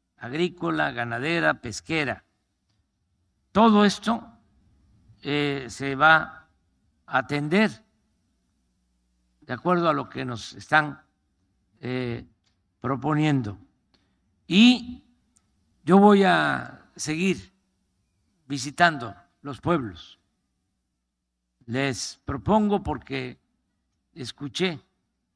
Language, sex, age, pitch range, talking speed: Spanish, male, 50-69, 90-155 Hz, 75 wpm